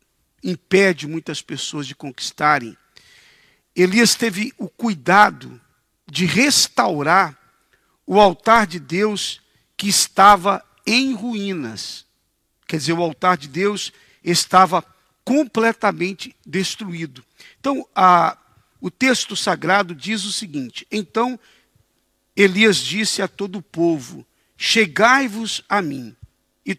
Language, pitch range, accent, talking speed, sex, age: Portuguese, 160-210 Hz, Brazilian, 105 wpm, male, 50-69